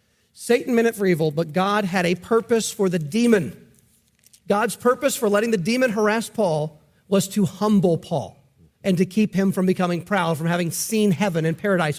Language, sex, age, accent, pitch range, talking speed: English, male, 40-59, American, 185-230 Hz, 190 wpm